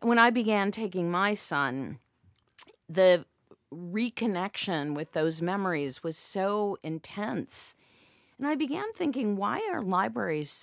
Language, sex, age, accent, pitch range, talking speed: English, female, 50-69, American, 160-210 Hz, 120 wpm